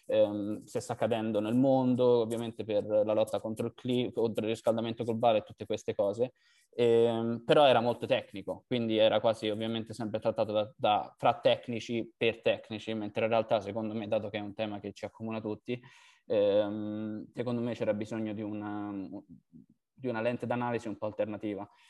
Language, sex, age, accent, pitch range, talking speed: English, male, 20-39, Italian, 105-120 Hz, 180 wpm